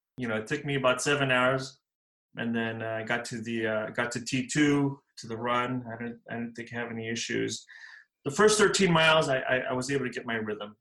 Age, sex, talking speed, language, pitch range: 30-49, male, 245 wpm, English, 110-135 Hz